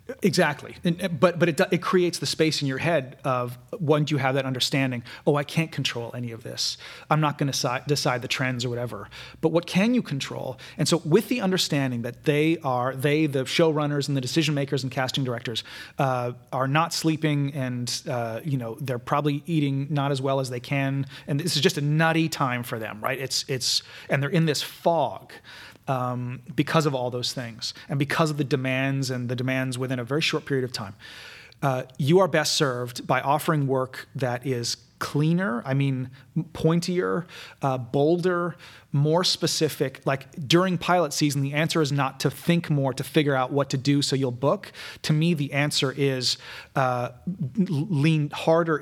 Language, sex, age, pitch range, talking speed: English, male, 30-49, 130-155 Hz, 195 wpm